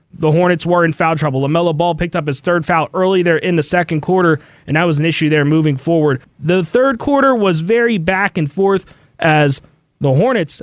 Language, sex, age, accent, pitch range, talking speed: English, male, 20-39, American, 160-200 Hz, 215 wpm